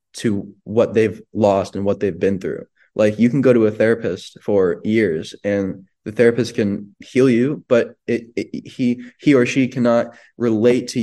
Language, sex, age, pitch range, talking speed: English, male, 20-39, 100-115 Hz, 185 wpm